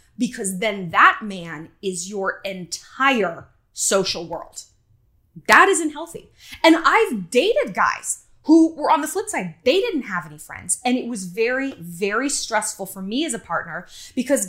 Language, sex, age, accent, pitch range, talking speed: English, female, 20-39, American, 185-280 Hz, 160 wpm